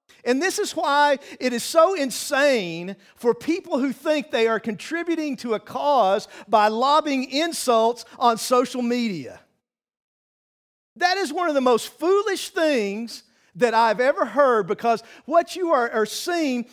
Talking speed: 150 wpm